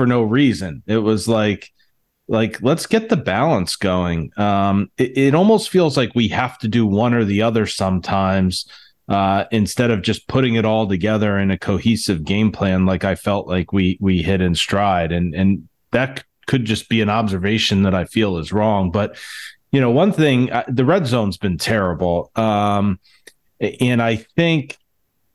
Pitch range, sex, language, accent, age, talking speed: 100-120 Hz, male, English, American, 40-59, 180 wpm